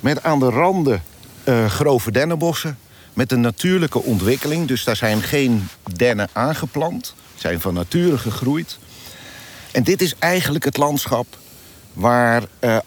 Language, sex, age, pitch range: Dutch, male, 50-69, 105-145 Hz